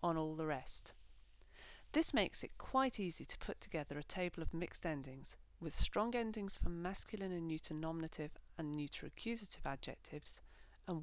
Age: 40-59